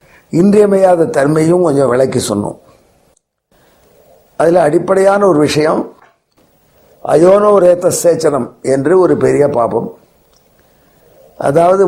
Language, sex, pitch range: Tamil, male, 150-185 Hz